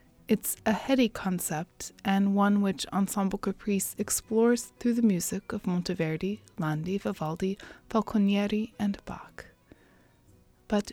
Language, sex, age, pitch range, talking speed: English, female, 30-49, 185-225 Hz, 115 wpm